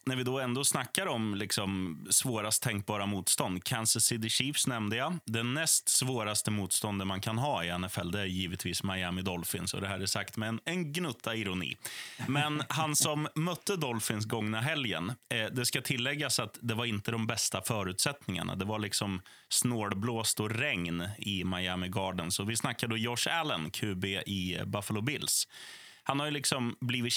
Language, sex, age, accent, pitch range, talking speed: Swedish, male, 30-49, native, 100-130 Hz, 180 wpm